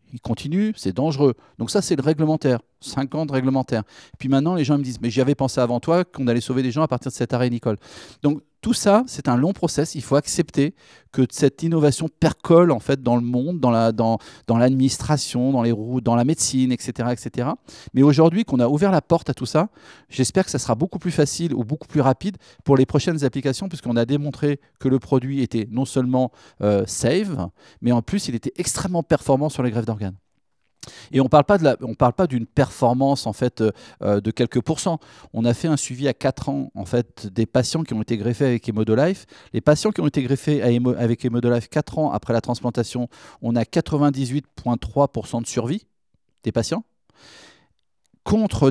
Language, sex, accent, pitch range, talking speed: French, male, French, 120-150 Hz, 210 wpm